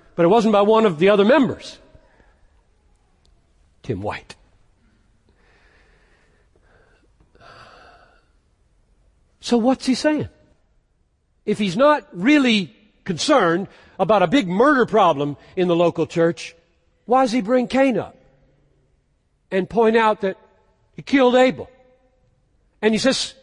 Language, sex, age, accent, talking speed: English, male, 60-79, American, 115 wpm